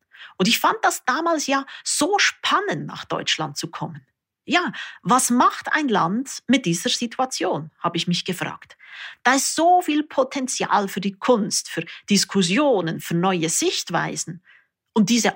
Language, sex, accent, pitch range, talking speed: German, female, Austrian, 170-240 Hz, 150 wpm